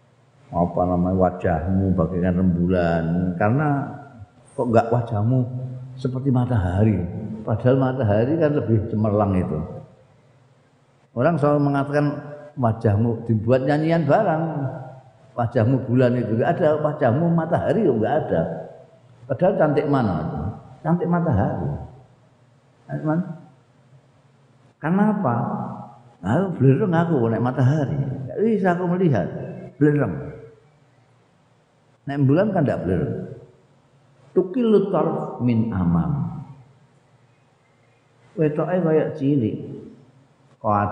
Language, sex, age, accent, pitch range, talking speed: Indonesian, male, 50-69, native, 110-145 Hz, 90 wpm